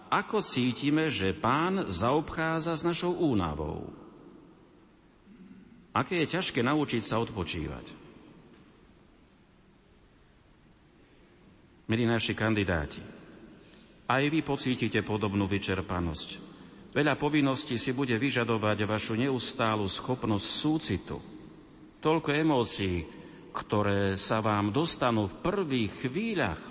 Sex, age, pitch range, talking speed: male, 50-69, 95-130 Hz, 90 wpm